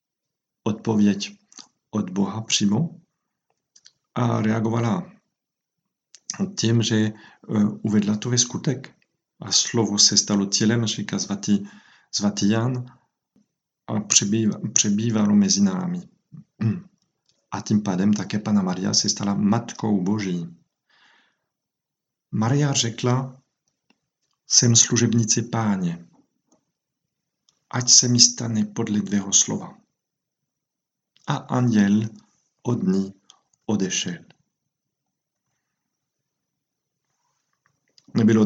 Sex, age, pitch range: male, 50-69, 100-125 Hz